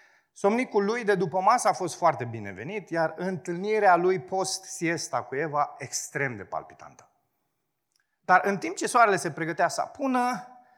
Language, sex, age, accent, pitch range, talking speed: Romanian, male, 30-49, native, 145-220 Hz, 150 wpm